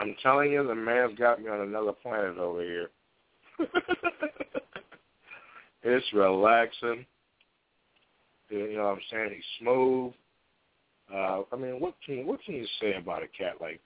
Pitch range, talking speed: 105-130 Hz, 145 wpm